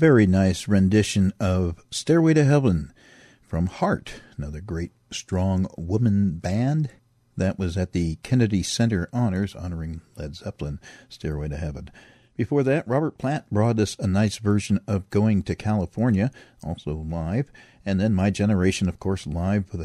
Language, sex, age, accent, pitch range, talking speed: English, male, 50-69, American, 90-115 Hz, 150 wpm